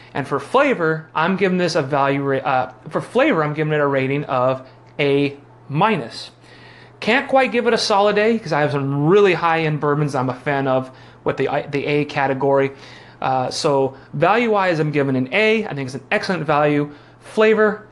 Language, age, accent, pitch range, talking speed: English, 30-49, American, 130-180 Hz, 190 wpm